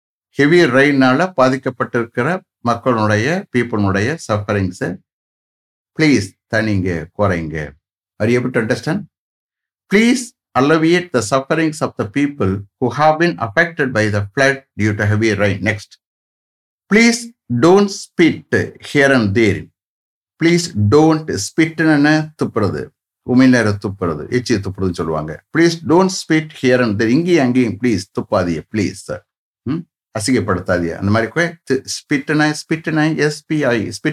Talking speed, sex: 130 wpm, male